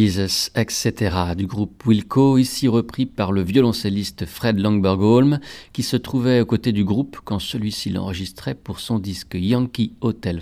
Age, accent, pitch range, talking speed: 50-69, French, 95-125 Hz, 150 wpm